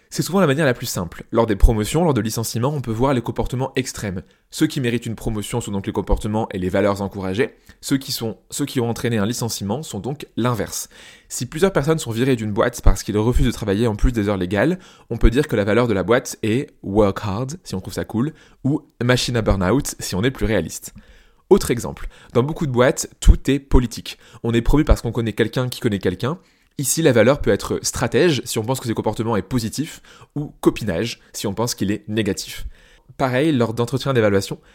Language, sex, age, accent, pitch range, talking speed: French, male, 20-39, French, 105-130 Hz, 225 wpm